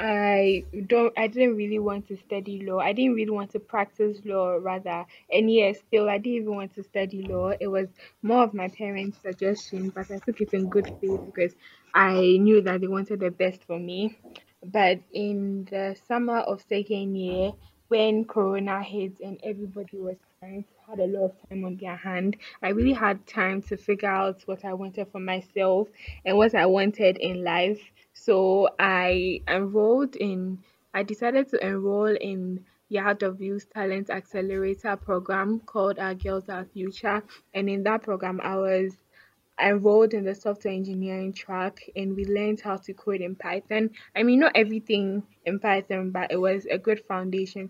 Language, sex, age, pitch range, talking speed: English, female, 10-29, 190-210 Hz, 180 wpm